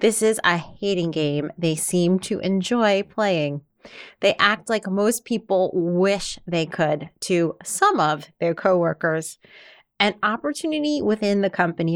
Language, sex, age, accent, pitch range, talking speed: English, female, 30-49, American, 170-205 Hz, 140 wpm